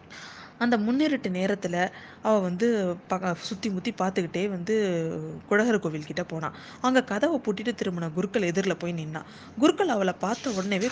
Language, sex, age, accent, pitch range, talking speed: Tamil, female, 20-39, native, 180-230 Hz, 135 wpm